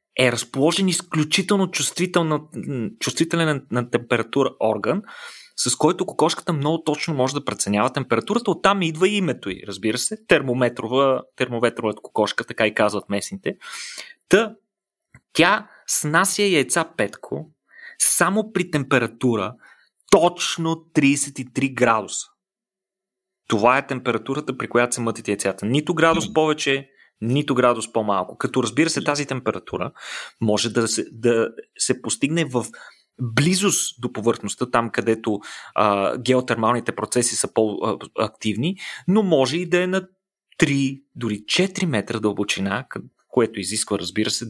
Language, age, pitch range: Bulgarian, 30-49, 115-170 Hz